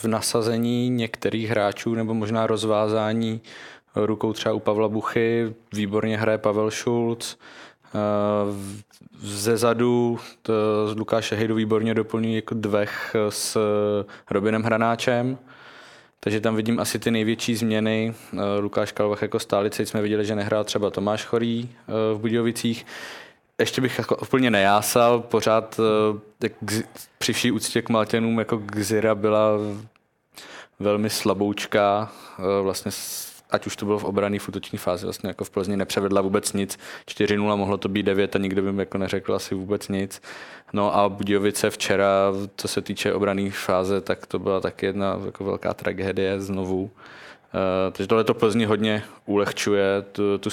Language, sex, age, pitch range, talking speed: Czech, male, 20-39, 100-110 Hz, 145 wpm